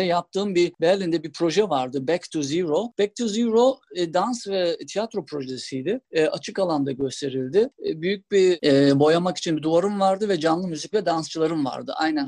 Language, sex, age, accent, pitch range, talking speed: Turkish, male, 50-69, native, 155-200 Hz, 180 wpm